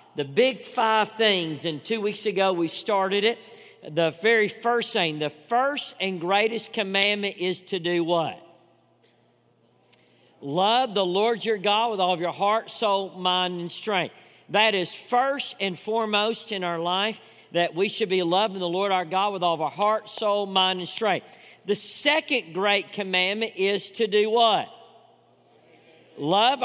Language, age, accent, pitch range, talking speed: English, 50-69, American, 185-225 Hz, 165 wpm